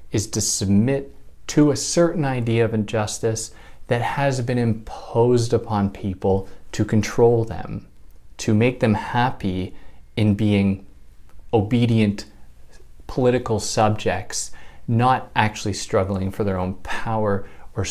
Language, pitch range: English, 100-130 Hz